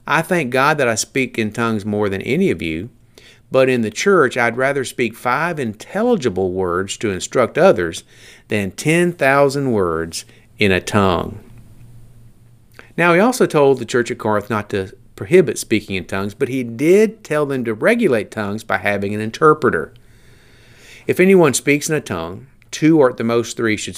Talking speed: 180 wpm